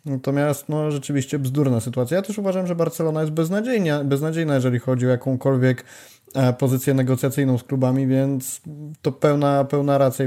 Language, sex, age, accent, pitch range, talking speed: Polish, male, 20-39, native, 125-145 Hz, 150 wpm